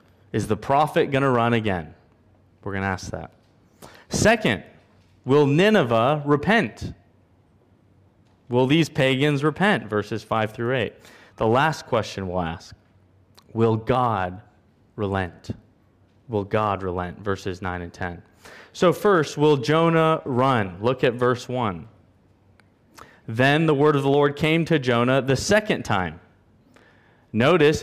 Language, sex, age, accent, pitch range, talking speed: English, male, 30-49, American, 100-145 Hz, 130 wpm